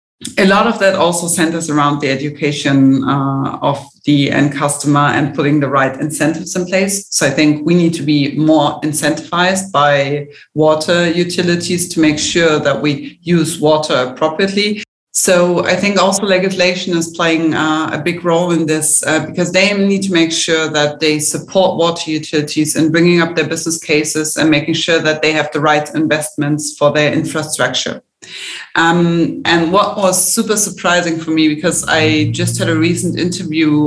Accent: German